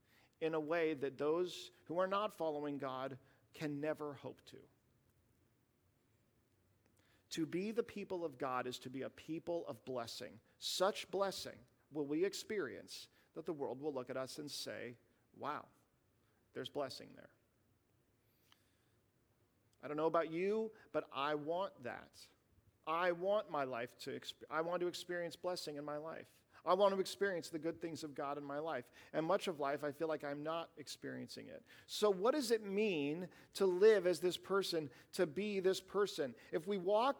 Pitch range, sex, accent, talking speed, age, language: 135-195 Hz, male, American, 175 wpm, 40-59, English